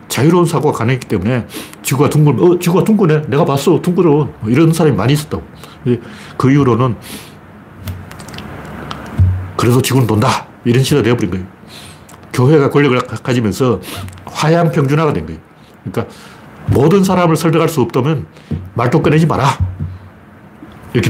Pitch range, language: 105-150 Hz, Korean